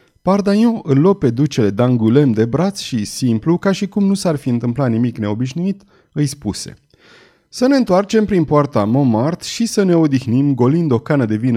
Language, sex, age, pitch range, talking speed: Romanian, male, 30-49, 115-160 Hz, 185 wpm